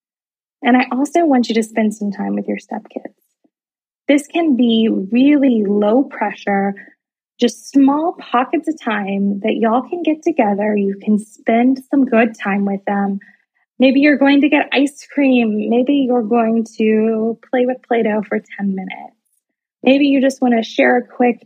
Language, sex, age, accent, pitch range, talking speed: English, female, 20-39, American, 220-275 Hz, 170 wpm